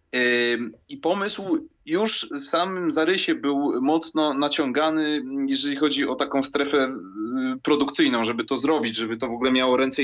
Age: 20-39